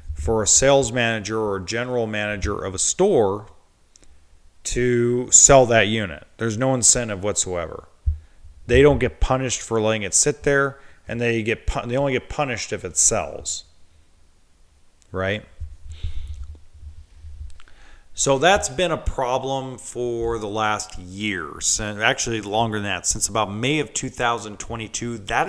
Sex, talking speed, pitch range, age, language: male, 135 wpm, 85-125 Hz, 40-59, English